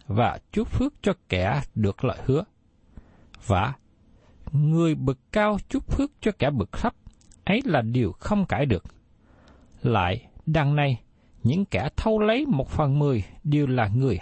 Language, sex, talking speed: Vietnamese, male, 155 wpm